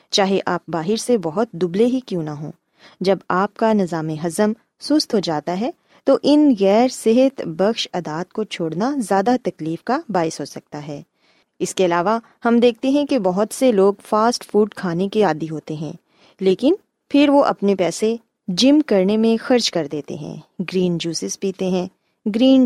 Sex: female